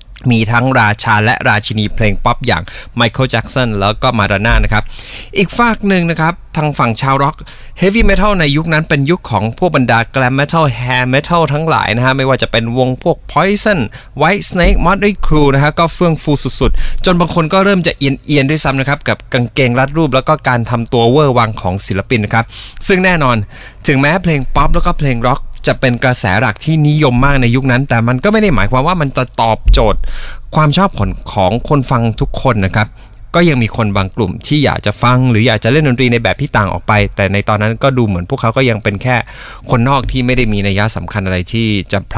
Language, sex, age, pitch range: Thai, male, 20-39, 110-145 Hz